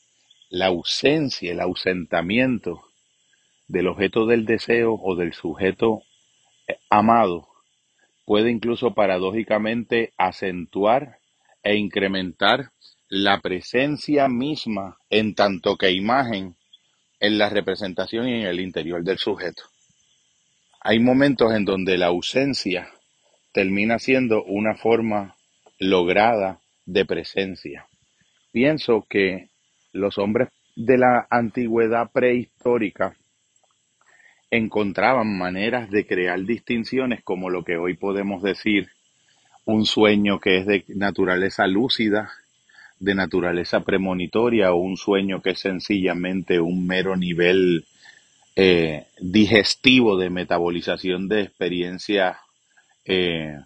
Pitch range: 90-115 Hz